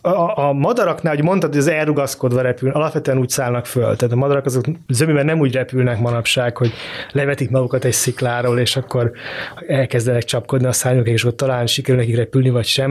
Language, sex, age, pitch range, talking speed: Hungarian, male, 20-39, 125-155 Hz, 195 wpm